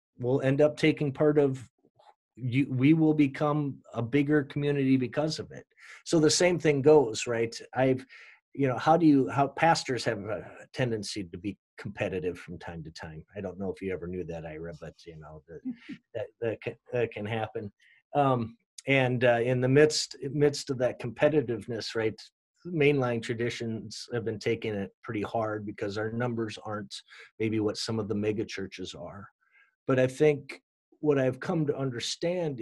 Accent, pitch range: American, 115-150 Hz